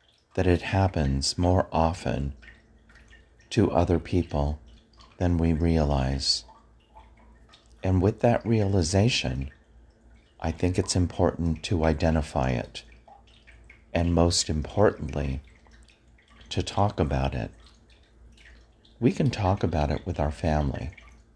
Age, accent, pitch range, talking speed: 40-59, American, 75-95 Hz, 105 wpm